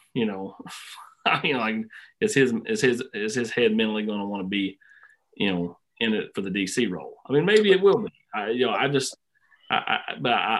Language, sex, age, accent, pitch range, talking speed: English, male, 30-49, American, 110-165 Hz, 230 wpm